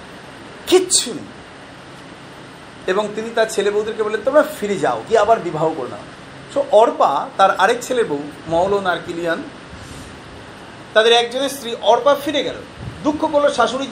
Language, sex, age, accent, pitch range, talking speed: Bengali, male, 40-59, native, 170-245 Hz, 135 wpm